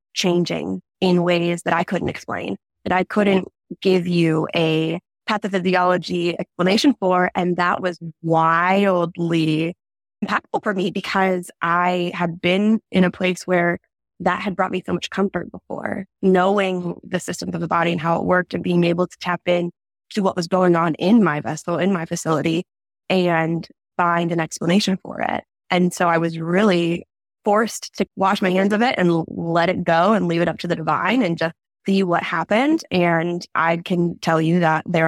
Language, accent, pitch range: English, American, 170-190 Hz